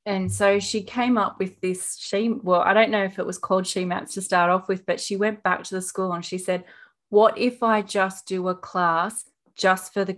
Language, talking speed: English, 250 wpm